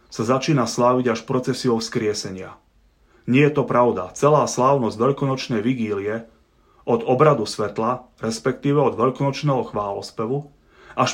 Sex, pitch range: male, 110-140 Hz